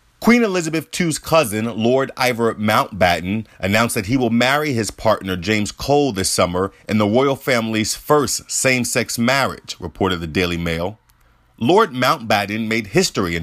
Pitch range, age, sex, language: 100-130 Hz, 30-49, male, English